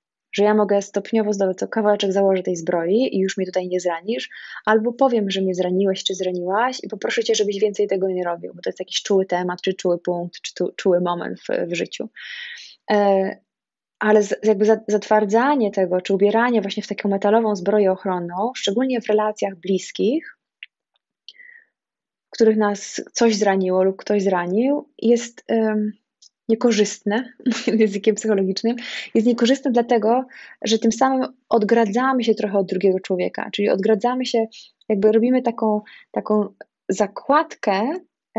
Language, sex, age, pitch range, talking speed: English, female, 20-39, 195-235 Hz, 145 wpm